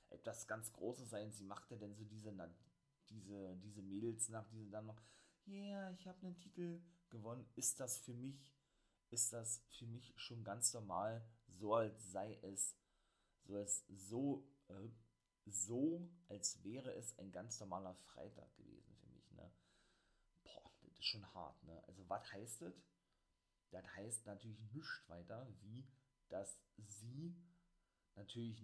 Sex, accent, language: male, German, German